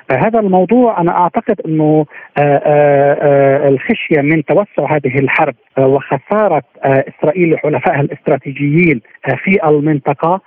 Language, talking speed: Arabic, 115 wpm